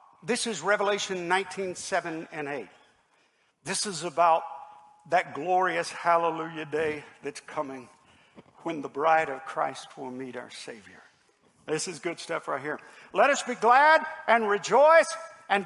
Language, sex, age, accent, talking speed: English, male, 50-69, American, 145 wpm